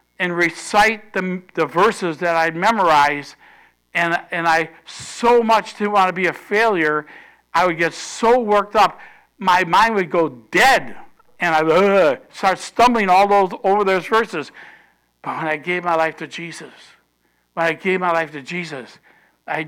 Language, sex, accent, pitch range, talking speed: English, male, American, 160-200 Hz, 170 wpm